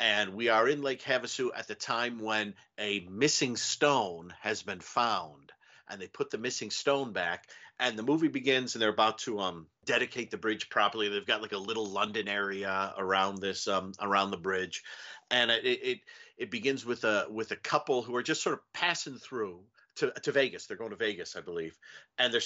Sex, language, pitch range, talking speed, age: male, English, 105-140 Hz, 205 wpm, 50-69